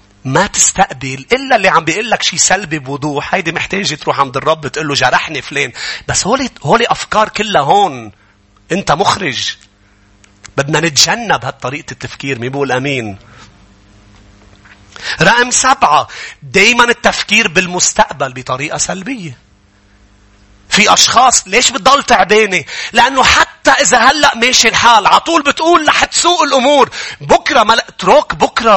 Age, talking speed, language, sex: 40-59, 120 wpm, English, male